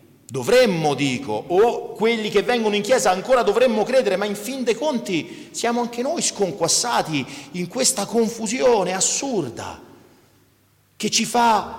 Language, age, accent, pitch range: Italian, 40-59, native, 135-220 Hz